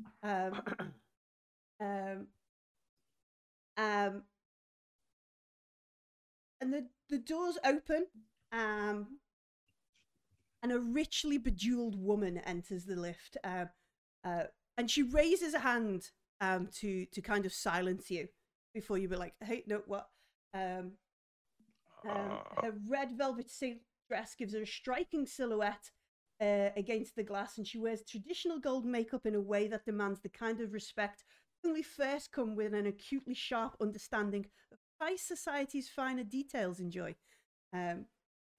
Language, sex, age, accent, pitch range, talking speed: English, female, 40-59, British, 195-255 Hz, 130 wpm